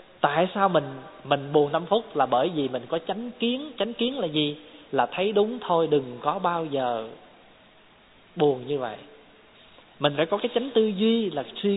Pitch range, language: 145-210 Hz, Vietnamese